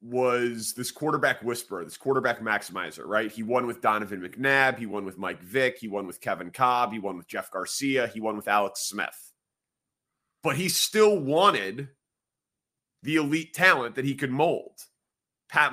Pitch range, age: 115-150 Hz, 30-49